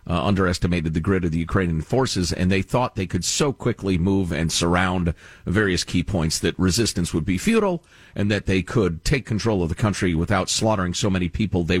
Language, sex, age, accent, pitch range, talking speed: English, male, 50-69, American, 85-140 Hz, 210 wpm